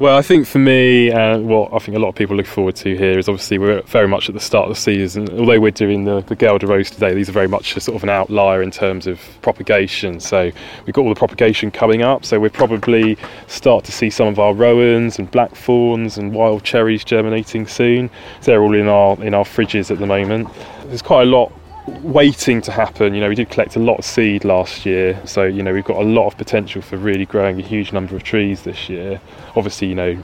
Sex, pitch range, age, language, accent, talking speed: male, 100-115 Hz, 20-39, English, British, 245 wpm